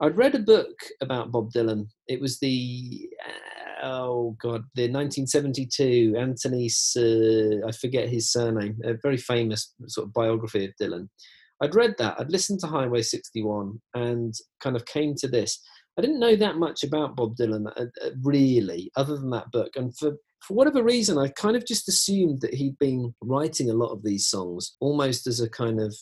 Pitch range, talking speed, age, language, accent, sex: 110-140 Hz, 185 wpm, 40-59, English, British, male